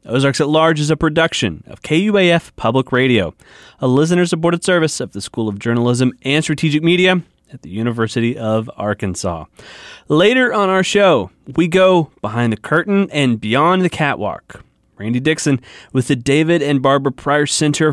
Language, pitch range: English, 125-170 Hz